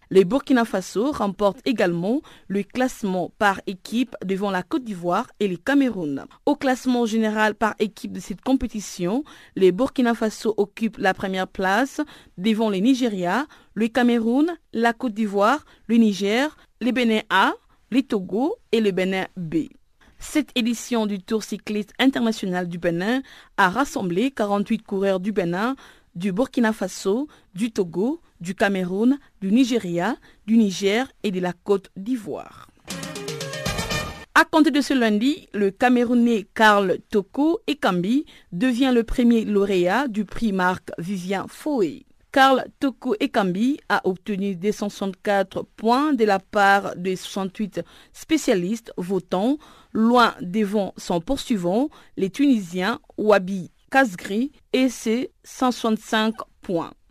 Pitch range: 195-255 Hz